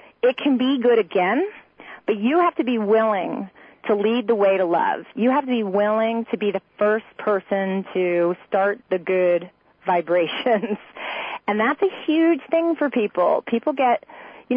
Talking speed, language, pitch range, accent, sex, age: 175 wpm, English, 185-245 Hz, American, female, 30-49